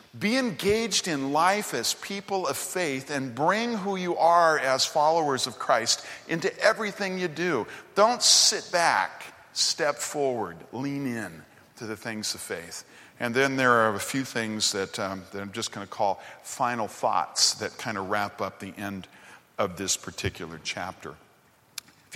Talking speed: 170 wpm